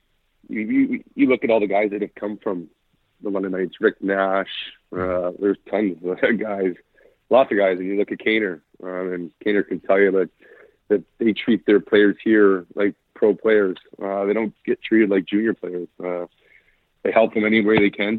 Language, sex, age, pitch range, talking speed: English, male, 30-49, 95-105 Hz, 205 wpm